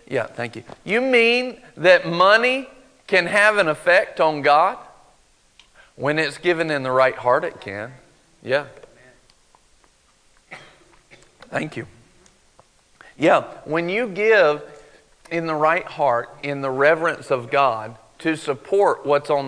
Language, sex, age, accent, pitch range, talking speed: English, male, 40-59, American, 135-185 Hz, 130 wpm